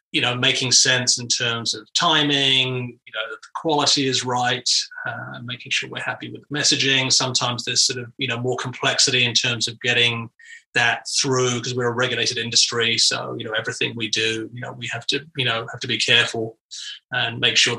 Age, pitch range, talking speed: 30-49, 115-130 Hz, 210 wpm